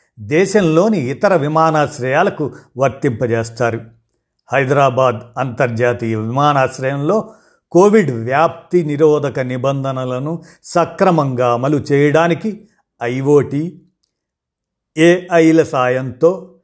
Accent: native